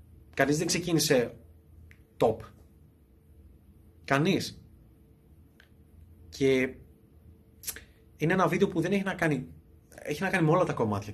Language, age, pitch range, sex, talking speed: Greek, 30-49, 95-145 Hz, male, 100 wpm